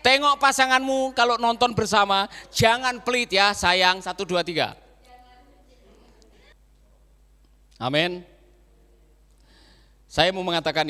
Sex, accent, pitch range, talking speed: male, native, 115-160 Hz, 90 wpm